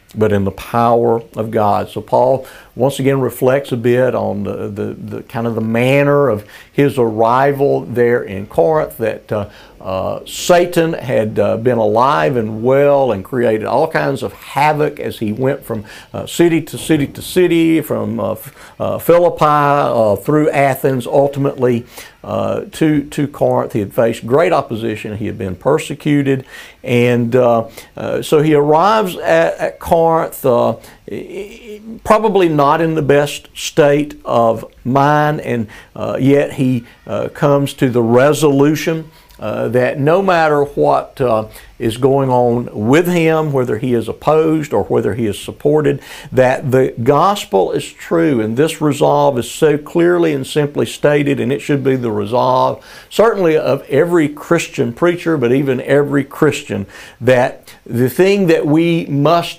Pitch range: 120-155 Hz